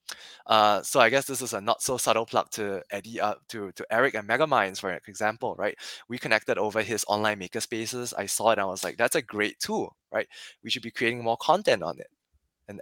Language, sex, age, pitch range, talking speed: English, male, 20-39, 100-120 Hz, 230 wpm